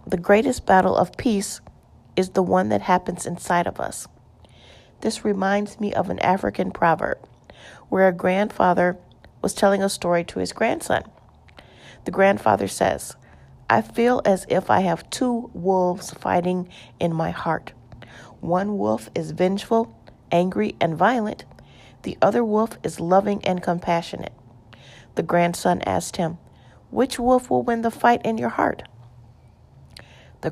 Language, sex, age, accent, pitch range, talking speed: English, female, 40-59, American, 165-205 Hz, 145 wpm